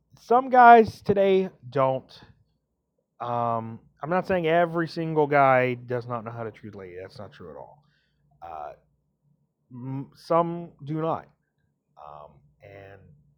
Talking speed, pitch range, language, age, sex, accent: 135 wpm, 120-160 Hz, English, 30-49, male, American